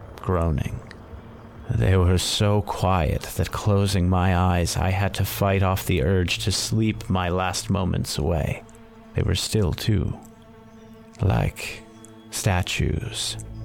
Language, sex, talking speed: English, male, 125 wpm